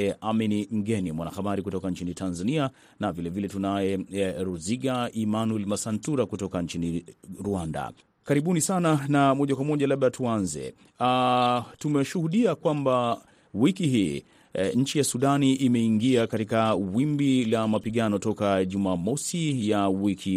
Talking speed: 130 wpm